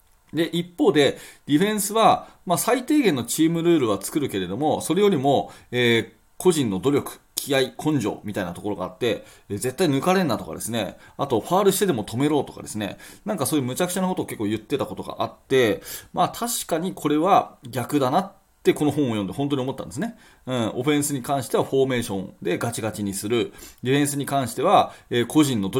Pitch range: 110-155 Hz